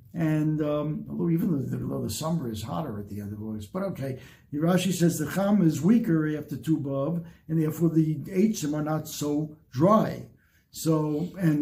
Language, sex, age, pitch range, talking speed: English, male, 60-79, 160-205 Hz, 190 wpm